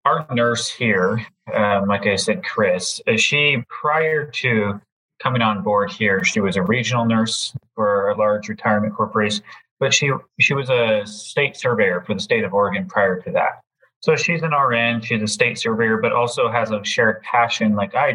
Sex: male